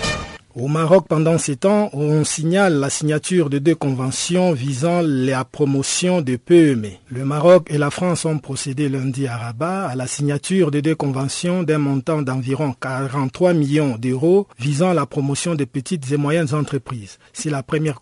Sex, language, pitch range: male, French, 130-165 Hz